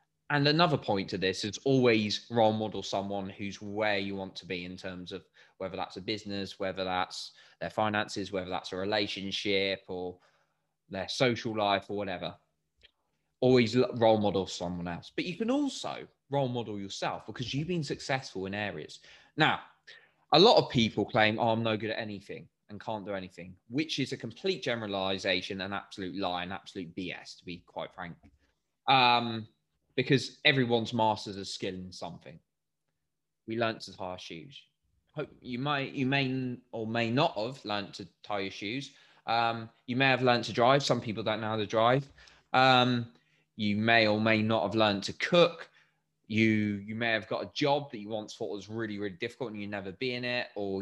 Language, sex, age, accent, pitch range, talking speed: English, male, 20-39, British, 100-125 Hz, 190 wpm